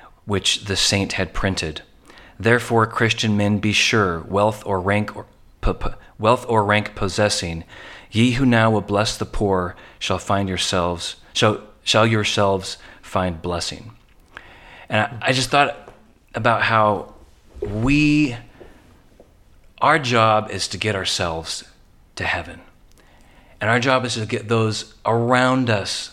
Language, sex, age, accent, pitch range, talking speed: English, male, 30-49, American, 95-120 Hz, 140 wpm